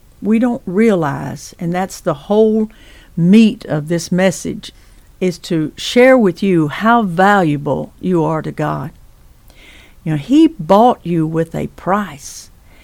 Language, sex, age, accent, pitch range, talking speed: English, female, 60-79, American, 155-220 Hz, 140 wpm